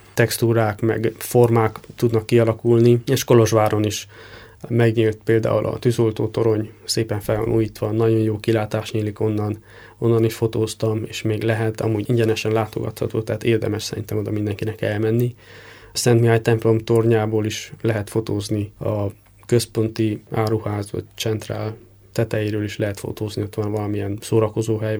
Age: 20-39